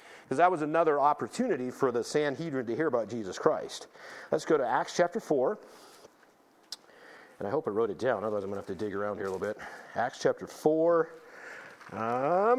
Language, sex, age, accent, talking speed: English, male, 50-69, American, 200 wpm